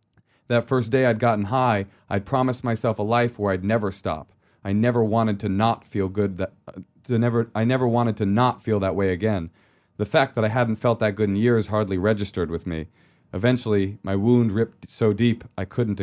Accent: American